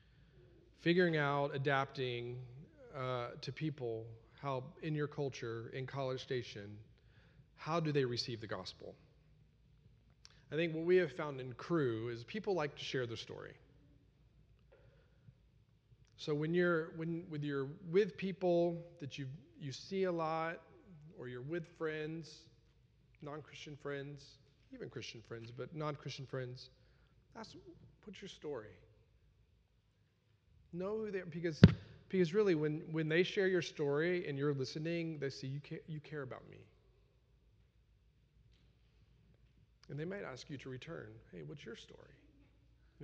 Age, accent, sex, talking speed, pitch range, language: 40-59, American, male, 135 wpm, 120-155 Hz, English